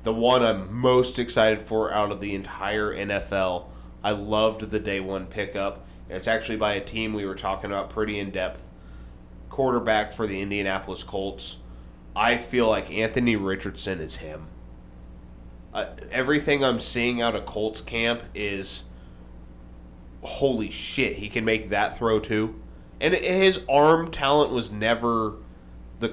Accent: American